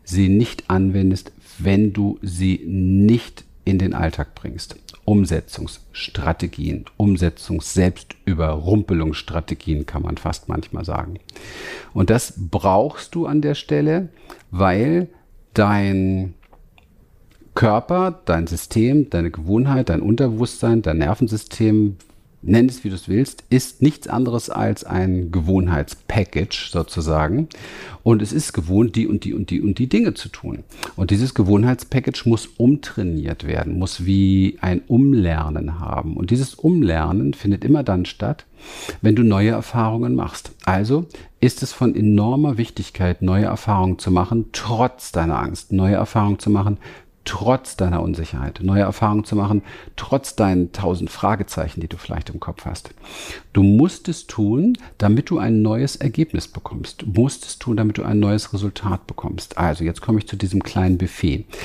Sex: male